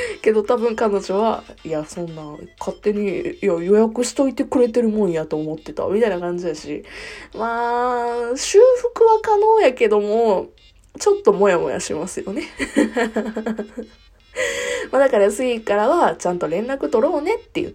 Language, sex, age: Japanese, female, 20-39